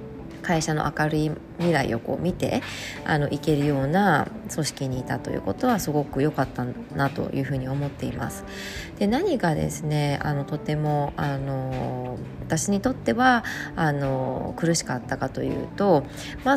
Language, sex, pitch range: Japanese, female, 135-190 Hz